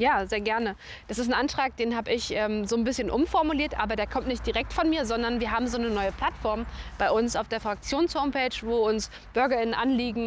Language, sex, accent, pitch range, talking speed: German, female, German, 210-245 Hz, 220 wpm